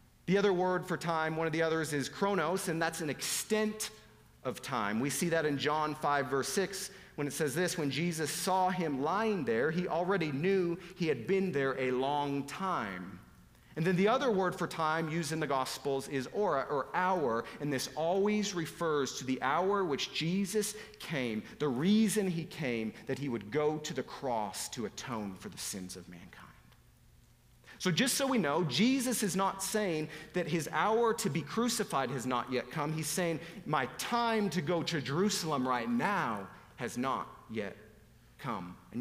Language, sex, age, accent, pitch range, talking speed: English, male, 40-59, American, 145-200 Hz, 190 wpm